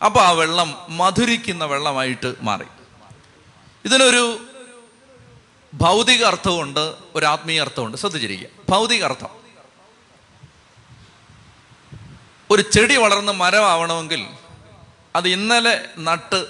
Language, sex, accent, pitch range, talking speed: Malayalam, male, native, 155-205 Hz, 80 wpm